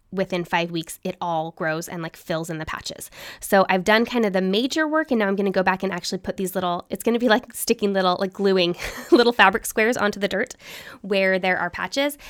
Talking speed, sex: 250 wpm, female